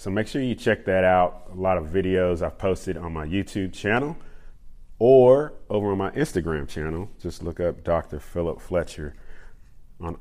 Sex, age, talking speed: male, 40-59, 175 wpm